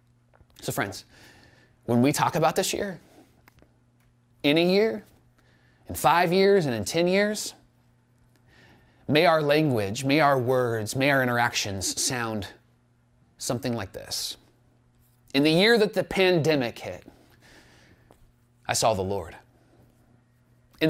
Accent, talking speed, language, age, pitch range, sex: American, 125 wpm, English, 30-49, 120-150 Hz, male